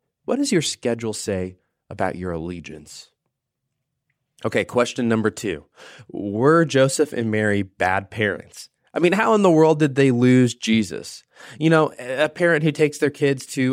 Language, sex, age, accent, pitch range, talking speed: English, male, 20-39, American, 110-150 Hz, 160 wpm